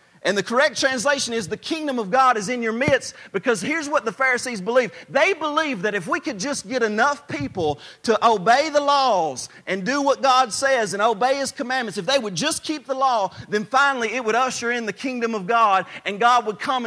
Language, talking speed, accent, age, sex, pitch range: English, 225 wpm, American, 40-59, male, 200-260 Hz